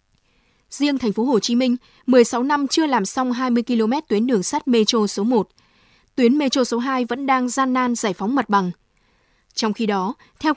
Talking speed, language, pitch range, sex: 200 wpm, Vietnamese, 215-265 Hz, female